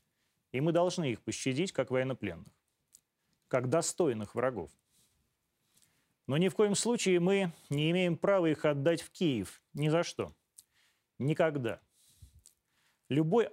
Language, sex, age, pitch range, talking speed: Russian, male, 30-49, 130-170 Hz, 125 wpm